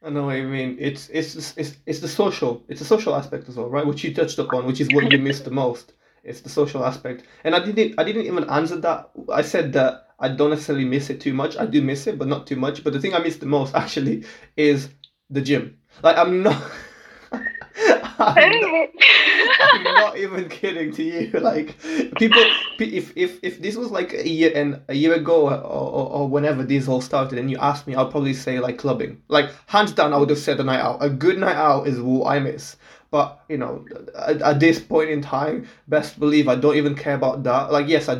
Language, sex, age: English, male, 20-39